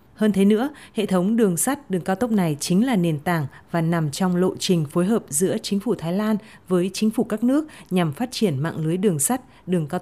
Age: 20-39